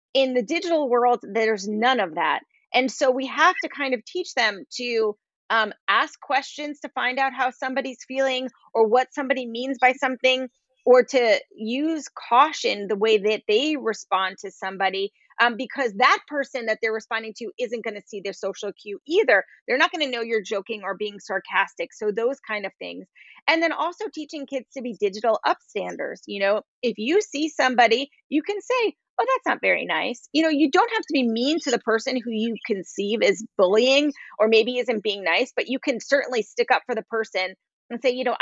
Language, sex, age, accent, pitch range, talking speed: English, female, 30-49, American, 210-270 Hz, 210 wpm